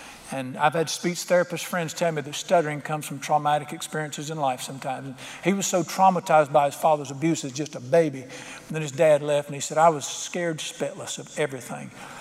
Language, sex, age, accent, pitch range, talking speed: English, male, 50-69, American, 150-185 Hz, 205 wpm